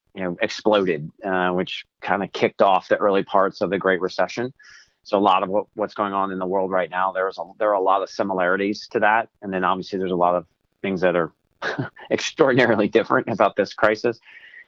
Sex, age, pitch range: male, 30-49, 95-105 Hz